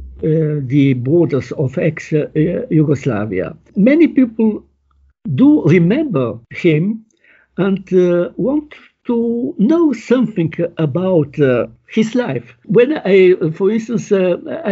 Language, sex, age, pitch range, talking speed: English, male, 60-79, 150-220 Hz, 115 wpm